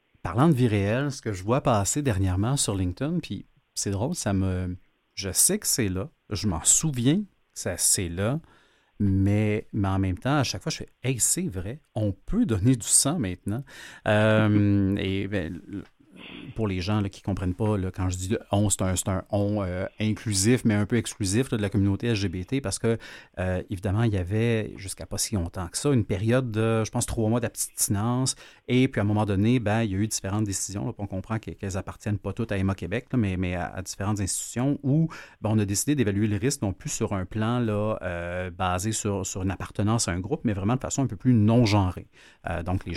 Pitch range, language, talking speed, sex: 95-120 Hz, French, 235 wpm, male